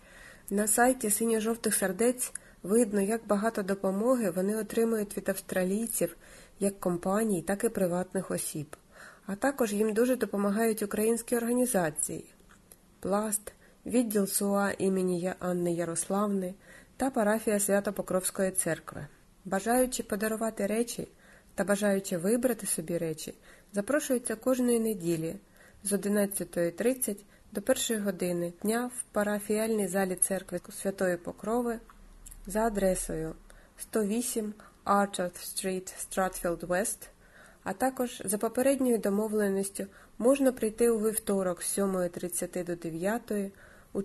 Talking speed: 110 wpm